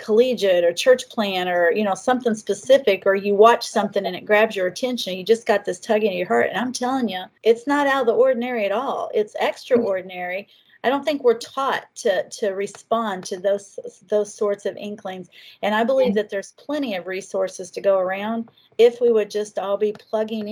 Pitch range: 195-240 Hz